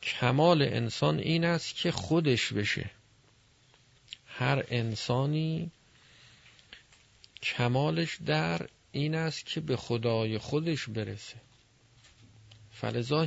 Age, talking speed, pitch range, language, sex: 40-59, 85 wpm, 115-140 Hz, Persian, male